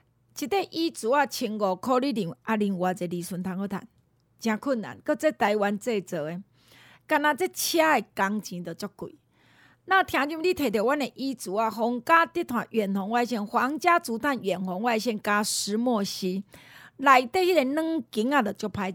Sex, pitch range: female, 205-295 Hz